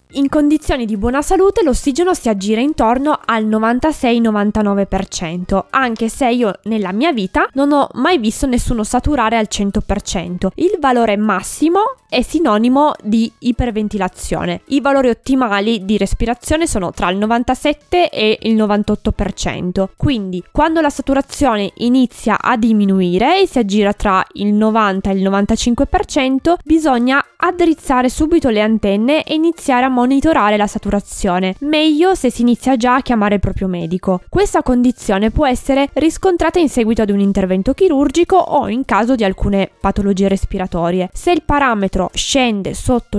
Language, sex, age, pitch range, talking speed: Italian, female, 20-39, 205-280 Hz, 145 wpm